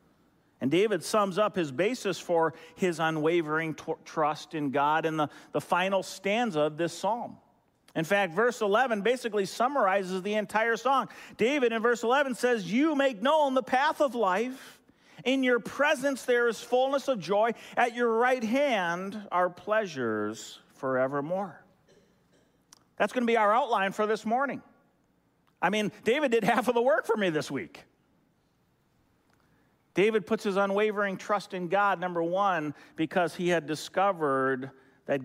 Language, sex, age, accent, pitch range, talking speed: English, male, 40-59, American, 165-230 Hz, 155 wpm